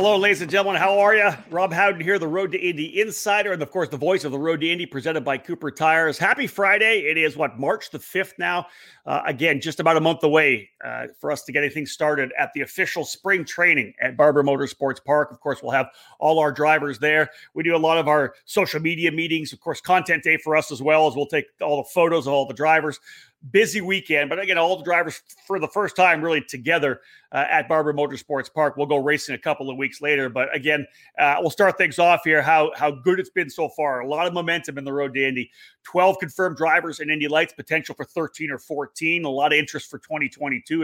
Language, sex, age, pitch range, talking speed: English, male, 40-59, 145-180 Hz, 240 wpm